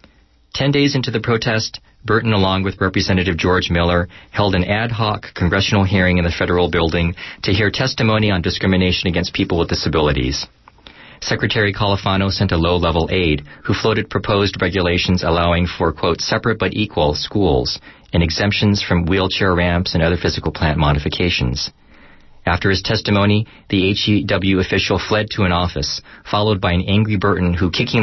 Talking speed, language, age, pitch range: 160 wpm, English, 40-59, 85-105 Hz